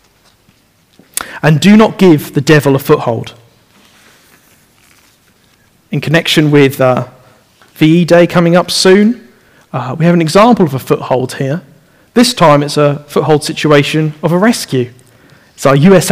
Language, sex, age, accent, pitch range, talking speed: English, male, 40-59, British, 145-185 Hz, 140 wpm